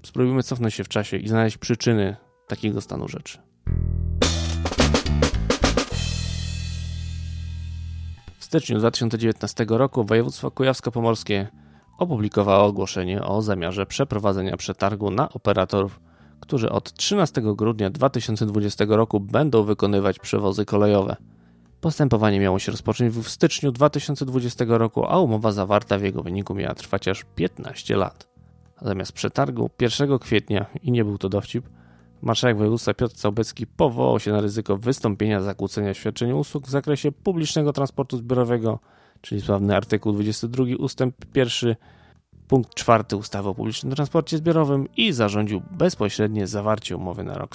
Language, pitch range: Polish, 95-125 Hz